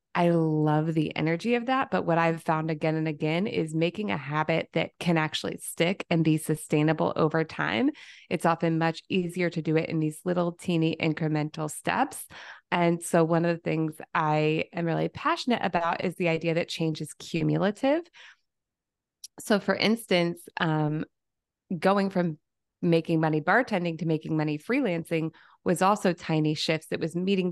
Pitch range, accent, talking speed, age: 155-175 Hz, American, 170 wpm, 20-39